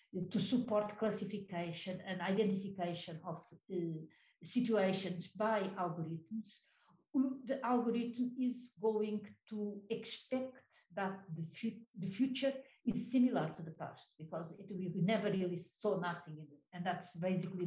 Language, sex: English, female